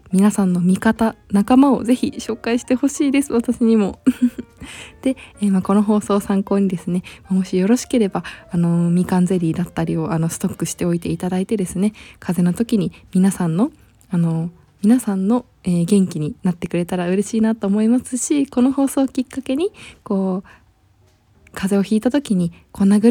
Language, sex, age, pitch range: Japanese, female, 20-39, 185-240 Hz